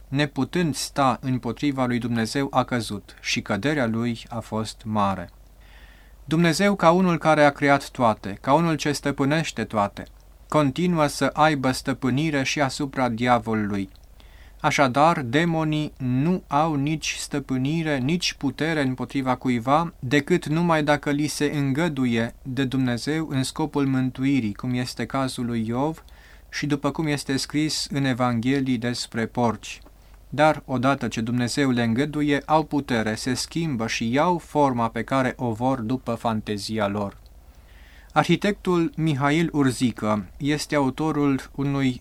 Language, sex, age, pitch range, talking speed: Romanian, male, 30-49, 115-145 Hz, 135 wpm